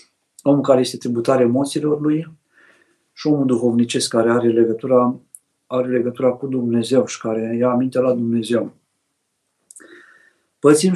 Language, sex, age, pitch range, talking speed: Romanian, male, 50-69, 125-150 Hz, 125 wpm